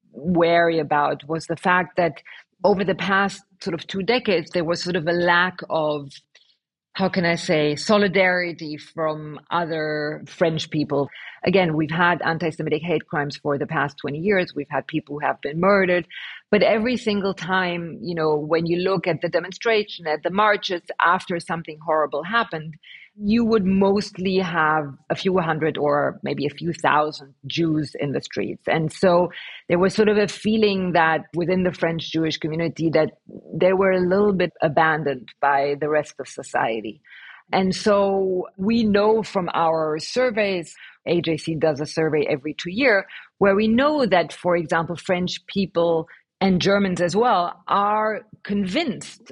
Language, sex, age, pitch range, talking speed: English, female, 40-59, 160-195 Hz, 165 wpm